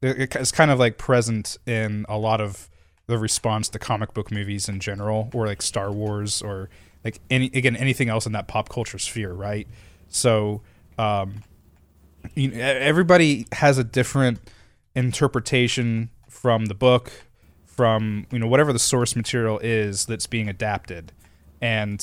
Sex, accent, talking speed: male, American, 155 wpm